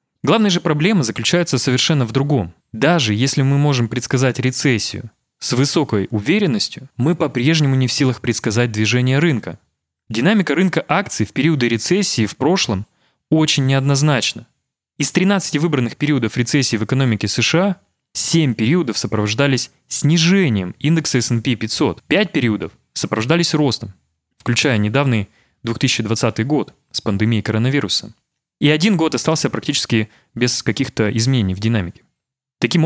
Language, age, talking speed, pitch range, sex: Russian, 20-39, 130 wpm, 115-155 Hz, male